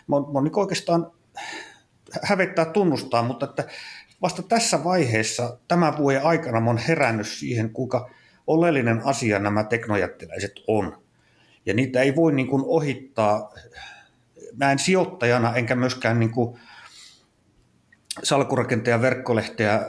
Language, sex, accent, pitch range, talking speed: Finnish, male, native, 110-140 Hz, 110 wpm